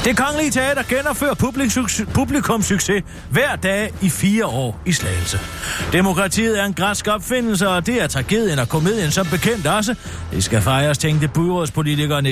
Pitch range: 135-200 Hz